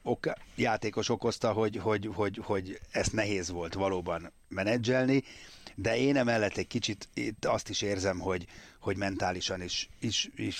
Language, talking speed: Hungarian, 145 wpm